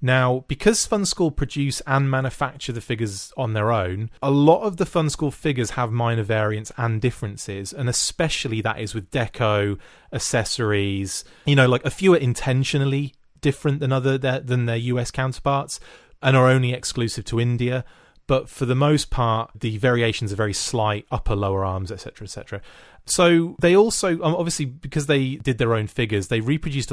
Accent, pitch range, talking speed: British, 110-135 Hz, 175 wpm